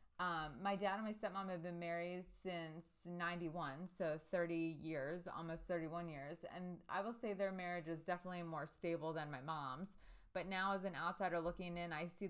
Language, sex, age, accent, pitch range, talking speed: English, female, 20-39, American, 160-185 Hz, 190 wpm